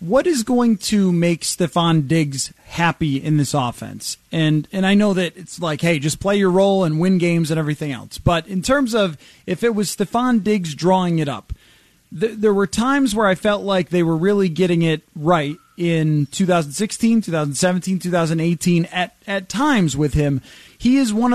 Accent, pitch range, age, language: American, 165-210 Hz, 30-49, English